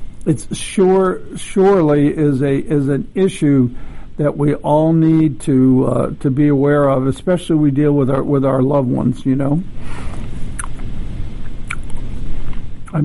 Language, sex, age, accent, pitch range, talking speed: English, male, 60-79, American, 140-170 Hz, 140 wpm